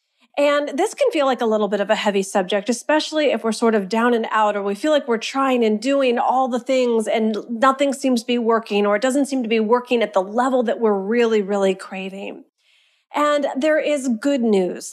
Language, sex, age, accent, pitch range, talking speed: English, female, 40-59, American, 215-280 Hz, 230 wpm